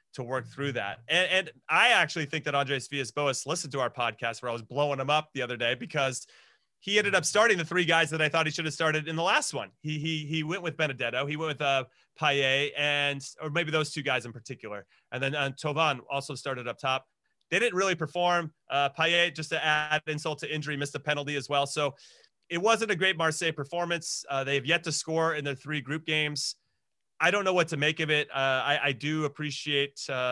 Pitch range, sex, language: 140-165 Hz, male, English